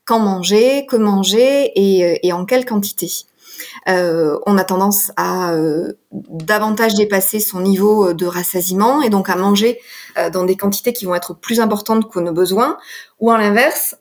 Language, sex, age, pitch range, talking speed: French, female, 20-39, 190-235 Hz, 170 wpm